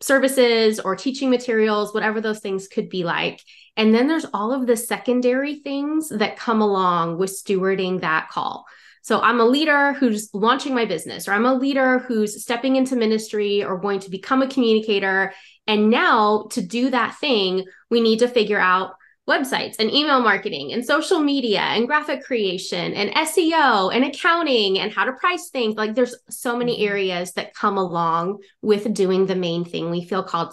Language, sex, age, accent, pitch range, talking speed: English, female, 20-39, American, 195-250 Hz, 185 wpm